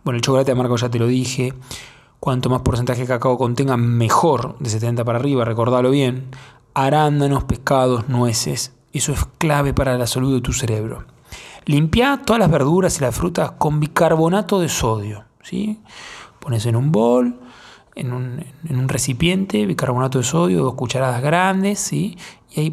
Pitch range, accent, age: 125-155 Hz, Argentinian, 20-39